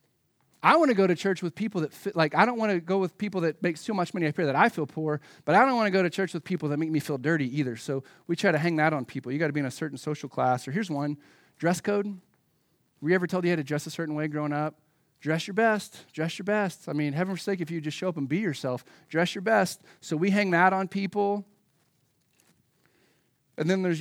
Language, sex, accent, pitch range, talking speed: English, male, American, 145-180 Hz, 275 wpm